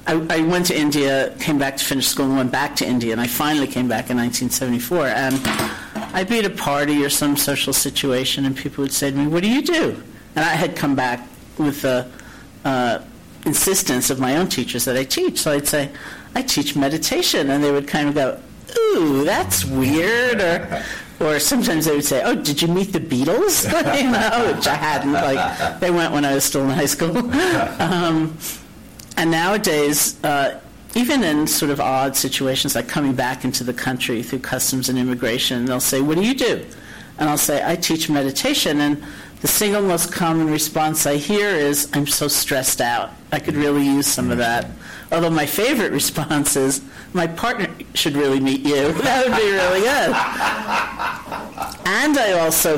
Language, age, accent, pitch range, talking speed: English, 50-69, American, 135-165 Hz, 195 wpm